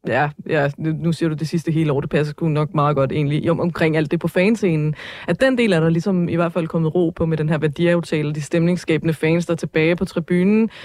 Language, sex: Danish, female